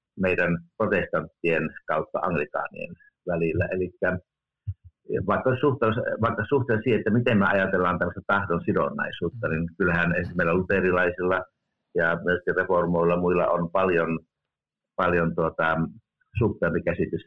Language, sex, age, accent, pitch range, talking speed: Finnish, male, 60-79, native, 80-105 Hz, 110 wpm